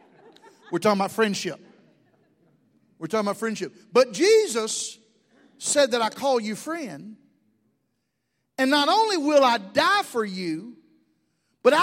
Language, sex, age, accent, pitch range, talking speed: English, male, 50-69, American, 200-280 Hz, 125 wpm